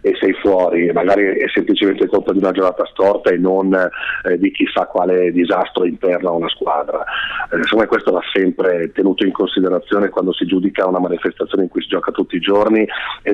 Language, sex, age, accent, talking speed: Italian, male, 40-59, native, 190 wpm